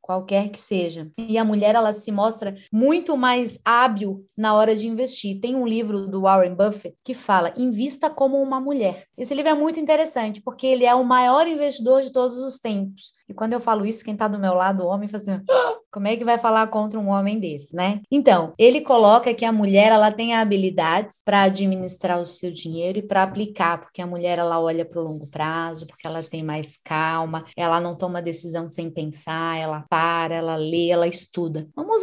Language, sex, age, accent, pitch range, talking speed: Portuguese, female, 20-39, Brazilian, 185-230 Hz, 210 wpm